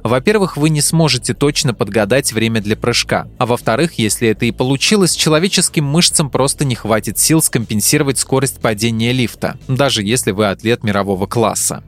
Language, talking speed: Russian, 155 wpm